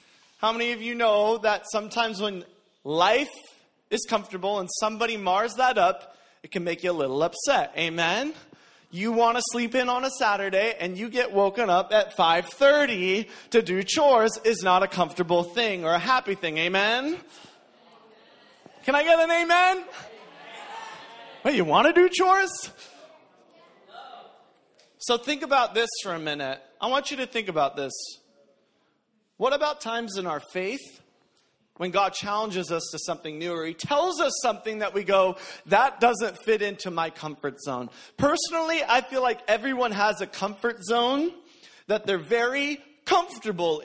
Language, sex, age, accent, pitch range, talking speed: English, male, 30-49, American, 180-245 Hz, 160 wpm